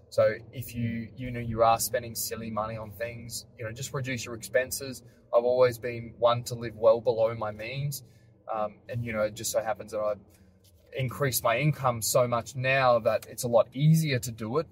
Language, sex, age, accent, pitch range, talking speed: English, male, 20-39, Australian, 110-125 Hz, 210 wpm